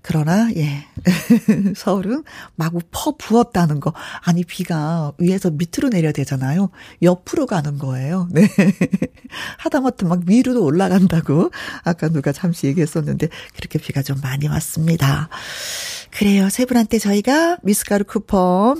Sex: female